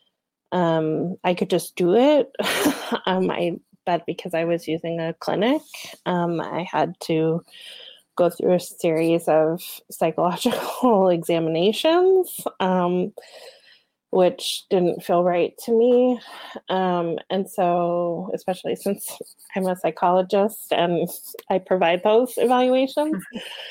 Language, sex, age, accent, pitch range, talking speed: English, female, 20-39, American, 175-230 Hz, 115 wpm